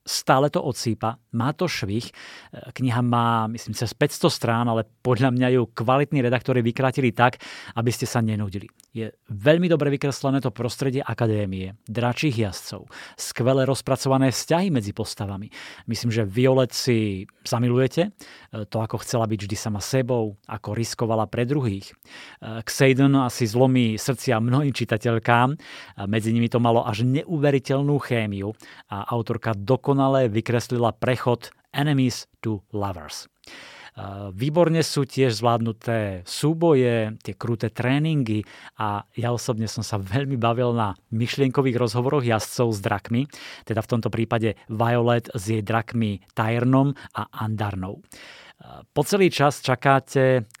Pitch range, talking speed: 110-135 Hz, 135 wpm